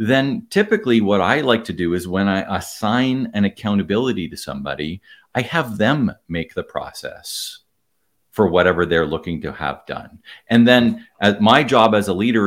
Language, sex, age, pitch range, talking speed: English, male, 50-69, 95-120 Hz, 170 wpm